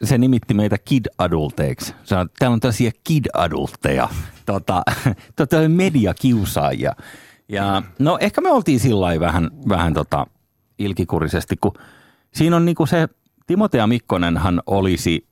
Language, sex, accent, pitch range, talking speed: Finnish, male, native, 85-115 Hz, 120 wpm